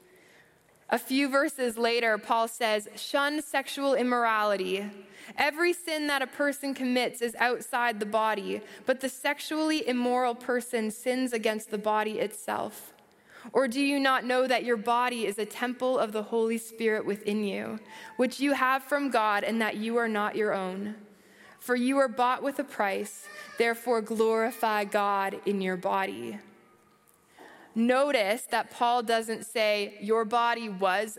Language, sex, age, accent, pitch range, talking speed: English, female, 20-39, American, 215-270 Hz, 150 wpm